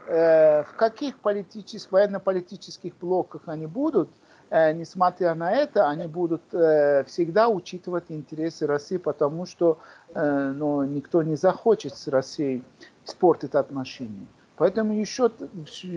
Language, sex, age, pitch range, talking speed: Russian, male, 50-69, 155-205 Hz, 110 wpm